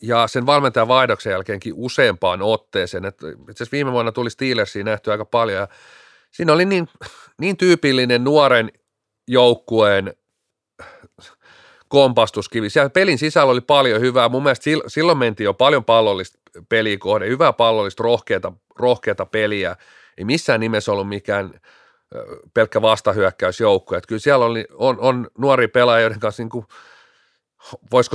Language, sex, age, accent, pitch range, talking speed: Finnish, male, 40-59, native, 110-130 Hz, 135 wpm